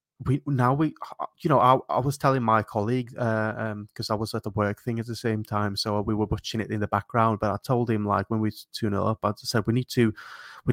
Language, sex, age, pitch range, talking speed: English, male, 20-39, 110-130 Hz, 270 wpm